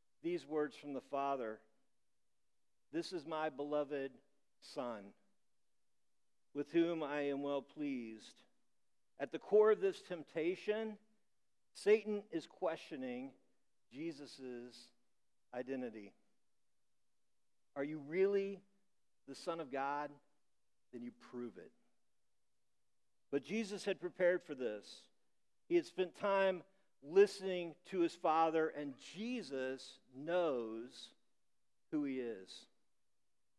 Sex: male